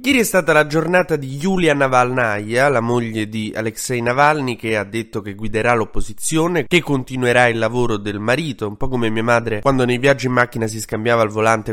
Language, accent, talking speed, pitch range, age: Italian, native, 200 wpm, 105-125 Hz, 20-39